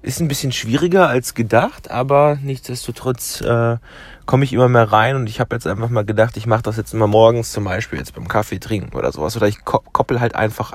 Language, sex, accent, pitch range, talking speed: German, male, German, 105-130 Hz, 225 wpm